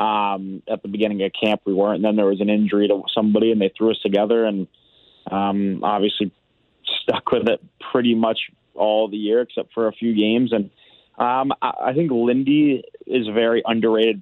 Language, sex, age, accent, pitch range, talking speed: English, male, 20-39, American, 105-115 Hz, 195 wpm